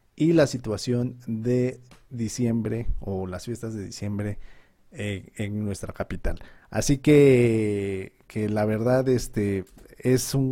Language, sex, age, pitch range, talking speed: Spanish, male, 40-59, 105-130 Hz, 125 wpm